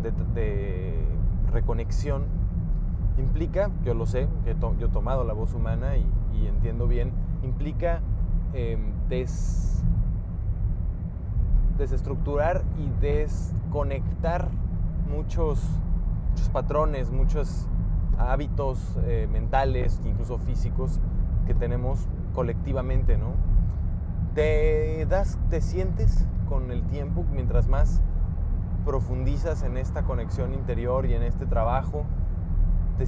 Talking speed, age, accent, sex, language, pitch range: 95 wpm, 20-39, Mexican, male, English, 85-100 Hz